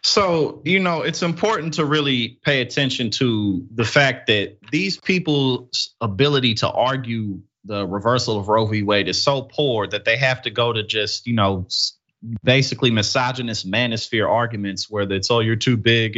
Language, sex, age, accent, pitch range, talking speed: English, male, 30-49, American, 110-155 Hz, 175 wpm